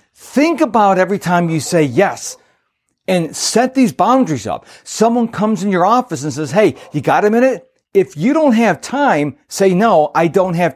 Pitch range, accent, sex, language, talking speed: 145-200 Hz, American, male, English, 190 wpm